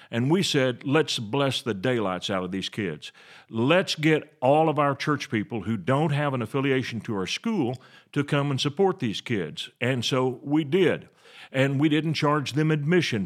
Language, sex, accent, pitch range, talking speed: English, male, American, 125-160 Hz, 190 wpm